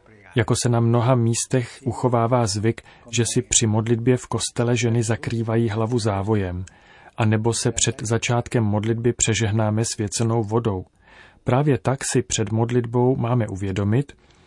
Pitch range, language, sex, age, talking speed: 105-120 Hz, Czech, male, 40-59, 135 wpm